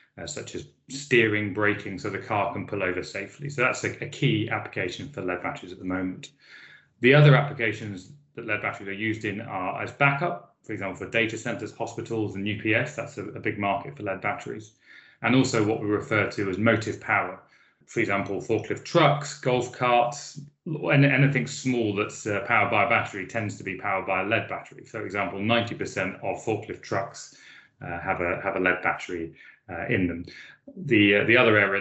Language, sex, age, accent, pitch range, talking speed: English, male, 30-49, British, 100-130 Hz, 195 wpm